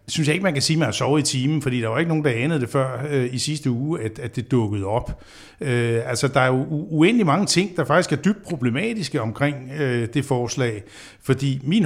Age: 60-79